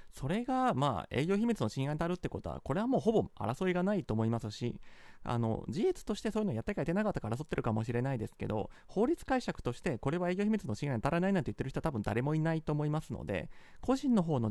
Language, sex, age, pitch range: Japanese, male, 30-49, 130-215 Hz